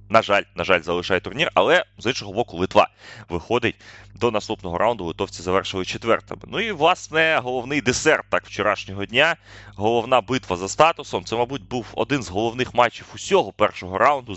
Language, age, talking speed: Russian, 20-39, 165 wpm